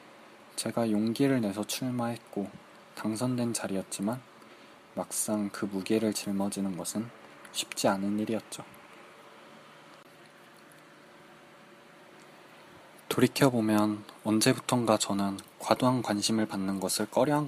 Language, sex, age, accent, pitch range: Korean, male, 20-39, native, 100-120 Hz